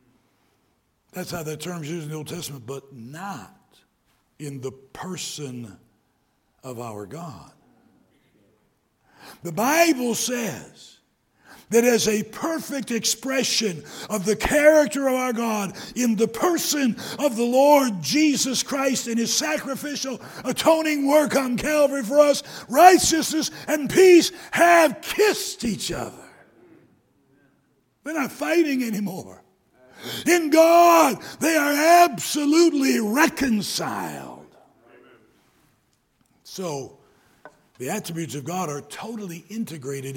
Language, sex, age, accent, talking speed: English, male, 60-79, American, 110 wpm